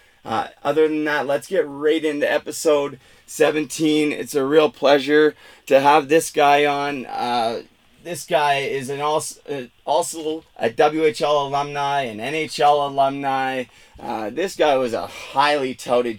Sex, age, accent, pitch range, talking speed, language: male, 30-49, American, 125-145 Hz, 145 wpm, English